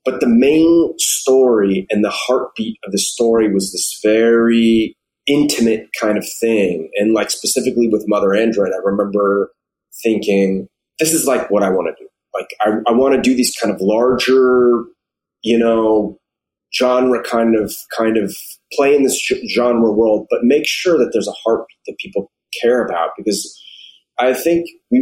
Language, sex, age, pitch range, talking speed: English, male, 30-49, 105-130 Hz, 170 wpm